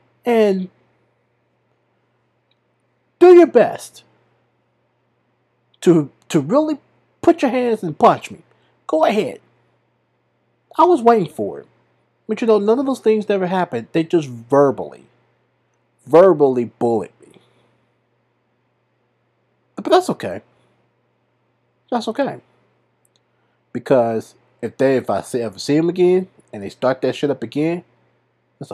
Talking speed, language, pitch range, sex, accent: 120 wpm, English, 100-160 Hz, male, American